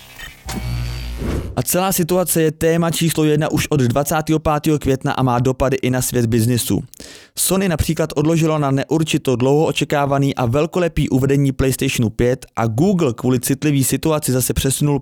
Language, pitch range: Czech, 125-155 Hz